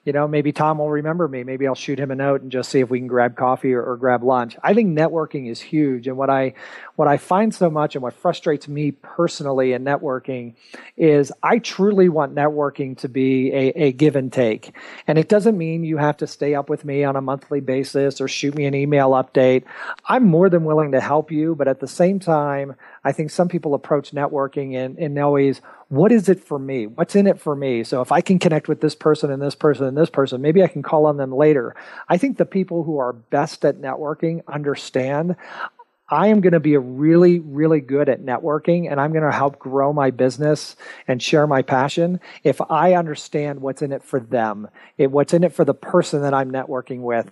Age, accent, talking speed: 40-59, American, 230 wpm